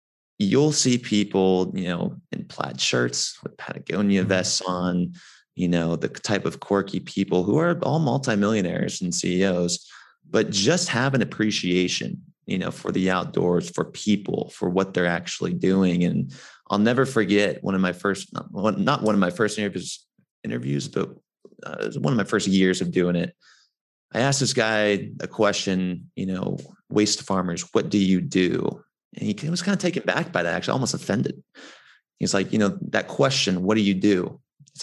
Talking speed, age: 185 wpm, 30-49